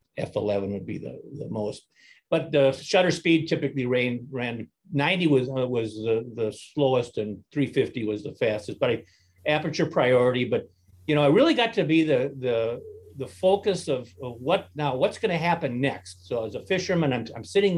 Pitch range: 110-150 Hz